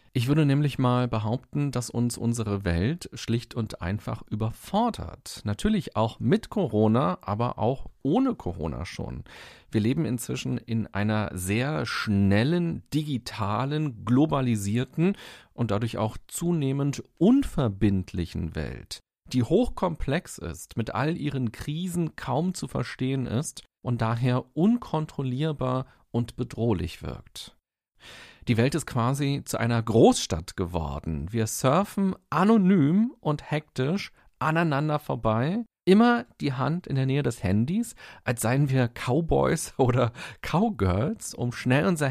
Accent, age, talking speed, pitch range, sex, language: German, 40-59, 125 wpm, 110-150 Hz, male, German